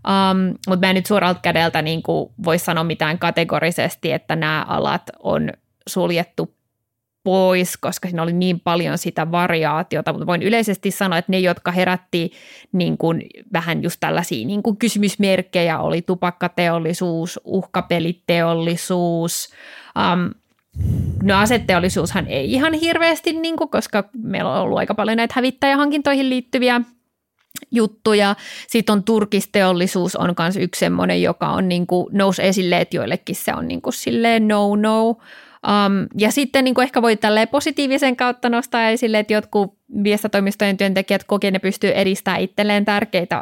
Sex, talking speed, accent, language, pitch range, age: female, 135 wpm, native, Finnish, 175-215 Hz, 20-39